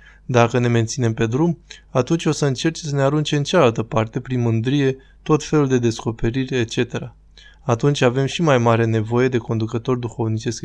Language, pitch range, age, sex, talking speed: Romanian, 115-140 Hz, 20-39, male, 175 wpm